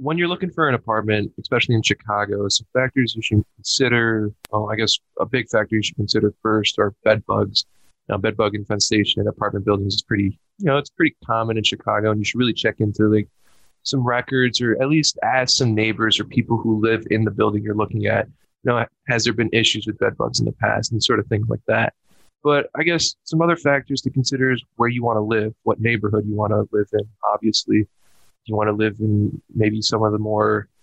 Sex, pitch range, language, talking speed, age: male, 105-120 Hz, English, 230 wpm, 20-39